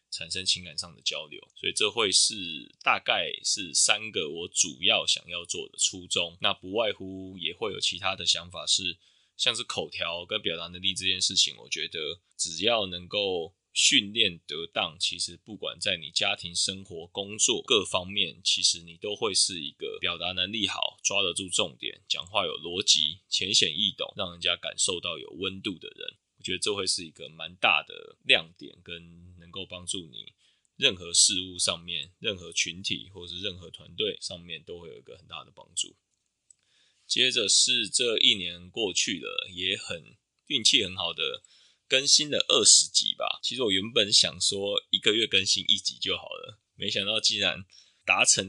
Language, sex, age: Chinese, male, 20-39